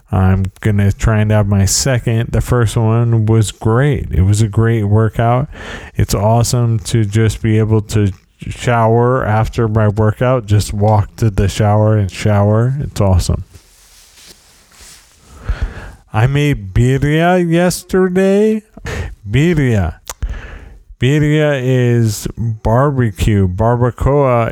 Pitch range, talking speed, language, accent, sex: 100-120 Hz, 115 wpm, English, American, male